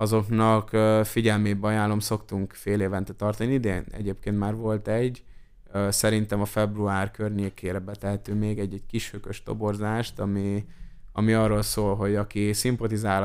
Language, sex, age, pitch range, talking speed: Hungarian, male, 20-39, 100-110 Hz, 125 wpm